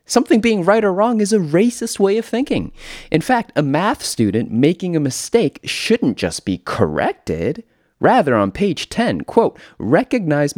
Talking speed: 165 wpm